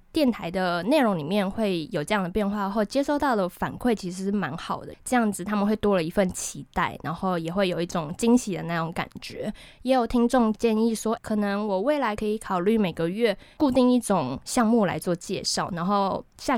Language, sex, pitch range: Chinese, female, 185-240 Hz